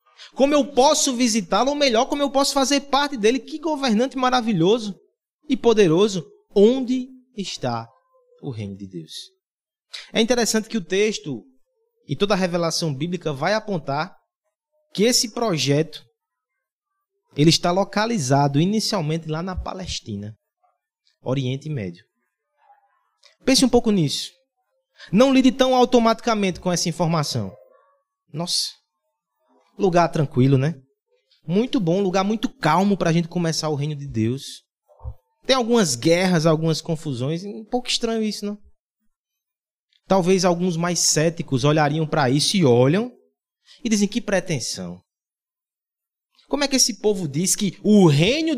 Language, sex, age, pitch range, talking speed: Portuguese, male, 20-39, 165-260 Hz, 130 wpm